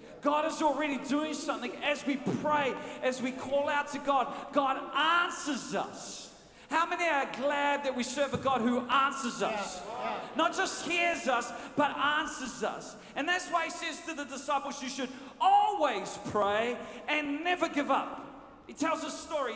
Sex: male